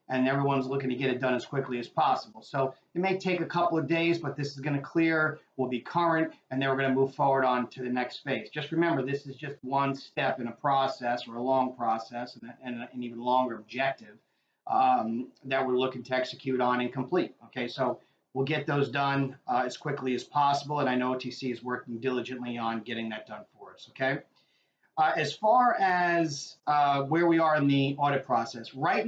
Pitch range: 125-150 Hz